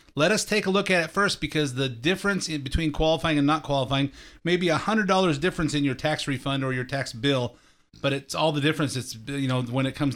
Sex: male